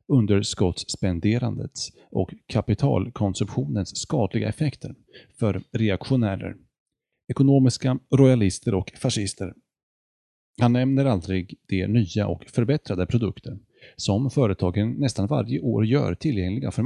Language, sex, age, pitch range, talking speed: Swedish, male, 30-49, 95-130 Hz, 95 wpm